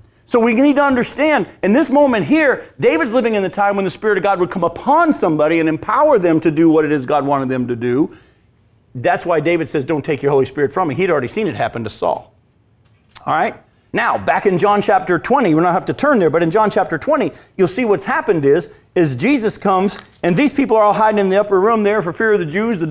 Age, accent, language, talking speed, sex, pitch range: 40-59, American, English, 255 wpm, male, 155-235 Hz